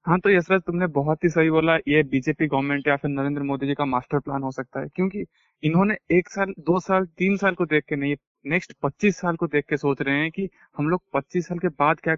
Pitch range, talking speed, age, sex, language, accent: 150-185 Hz, 250 wpm, 20-39, male, Hindi, native